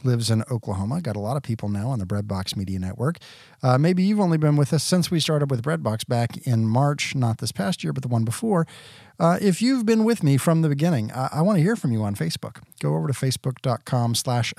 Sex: male